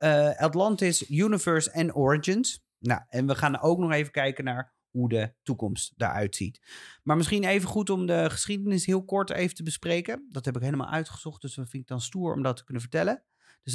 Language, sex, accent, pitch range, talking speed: Dutch, male, Dutch, 120-165 Hz, 205 wpm